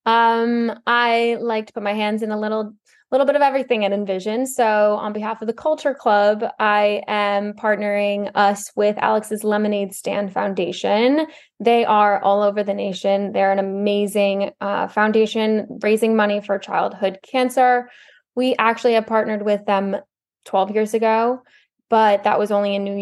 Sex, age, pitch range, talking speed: female, 10-29, 205-225 Hz, 165 wpm